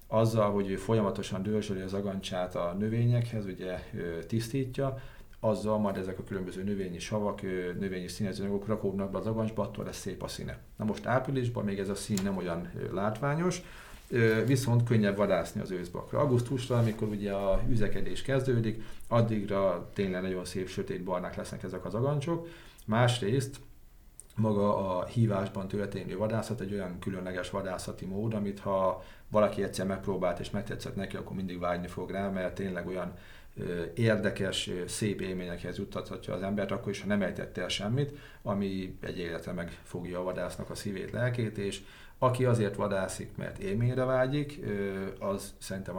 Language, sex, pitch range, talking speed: Hungarian, male, 95-115 Hz, 150 wpm